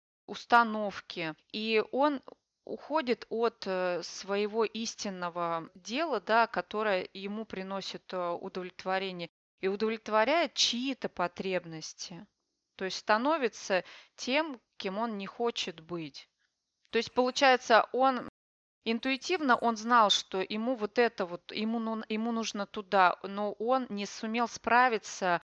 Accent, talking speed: native, 105 wpm